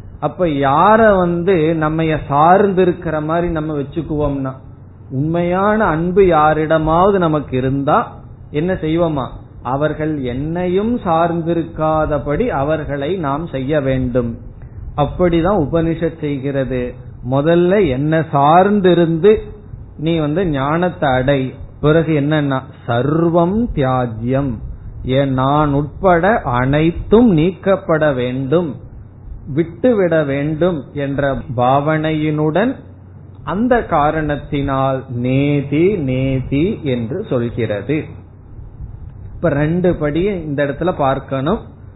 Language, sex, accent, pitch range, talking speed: Tamil, male, native, 130-170 Hz, 80 wpm